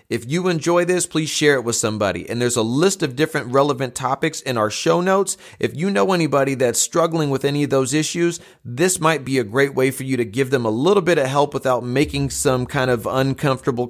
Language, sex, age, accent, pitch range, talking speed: English, male, 30-49, American, 120-145 Hz, 235 wpm